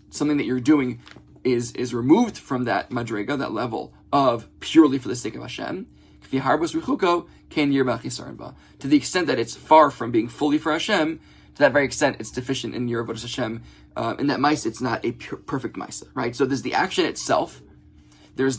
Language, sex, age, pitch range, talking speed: English, male, 20-39, 115-145 Hz, 180 wpm